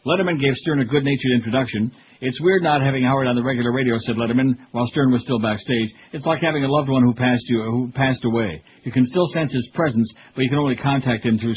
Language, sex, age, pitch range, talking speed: English, male, 60-79, 120-140 Hz, 245 wpm